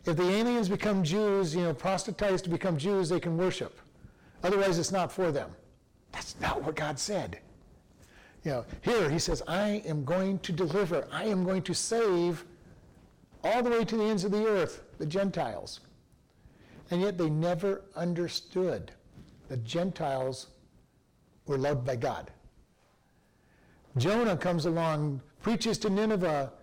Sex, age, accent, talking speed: male, 60-79, American, 150 wpm